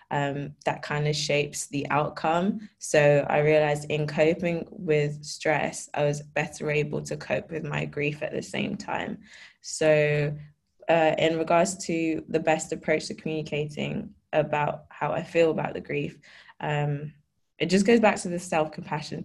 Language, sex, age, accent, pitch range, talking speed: English, female, 20-39, British, 150-165 Hz, 160 wpm